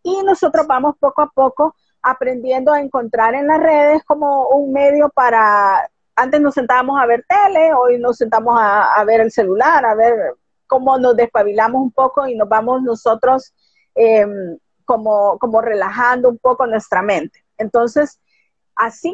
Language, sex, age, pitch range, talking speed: Spanish, female, 40-59, 220-275 Hz, 160 wpm